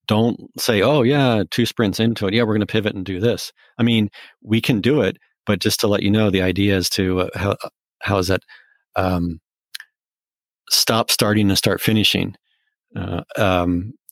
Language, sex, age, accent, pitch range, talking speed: English, male, 40-59, American, 90-110 Hz, 190 wpm